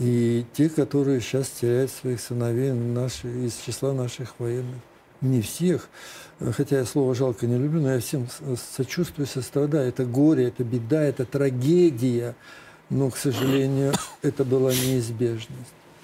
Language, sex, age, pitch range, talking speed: Russian, male, 60-79, 130-160 Hz, 135 wpm